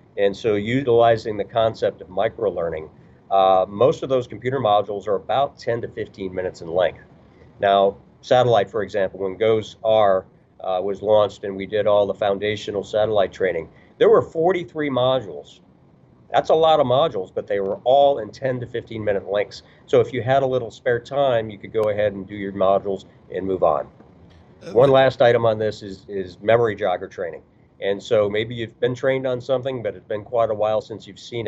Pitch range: 100-135 Hz